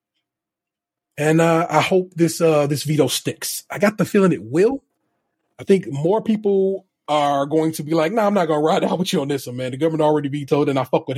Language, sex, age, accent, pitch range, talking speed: English, male, 30-49, American, 135-185 Hz, 240 wpm